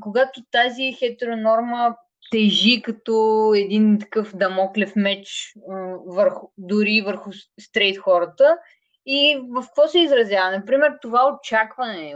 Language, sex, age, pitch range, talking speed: Bulgarian, female, 20-39, 185-245 Hz, 105 wpm